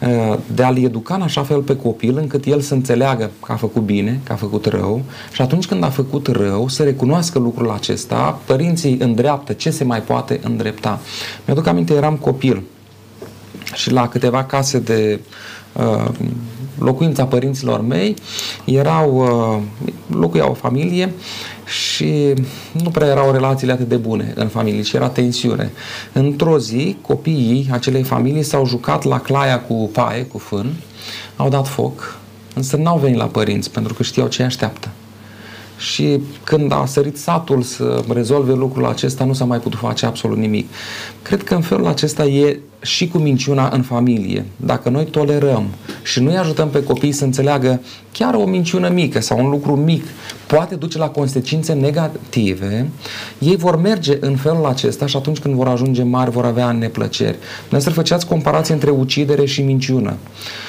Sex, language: male, Romanian